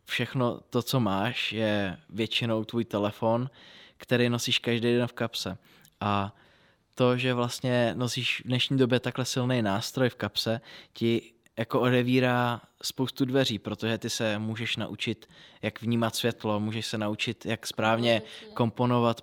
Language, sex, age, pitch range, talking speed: Czech, male, 20-39, 110-125 Hz, 145 wpm